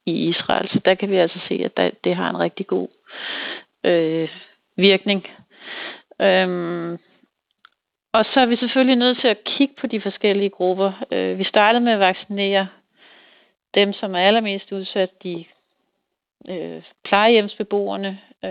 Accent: native